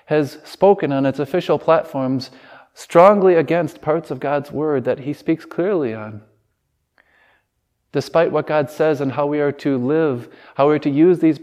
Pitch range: 130-160 Hz